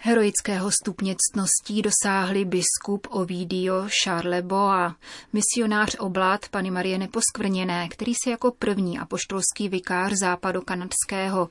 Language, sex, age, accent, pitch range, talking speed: Czech, female, 30-49, native, 180-210 Hz, 95 wpm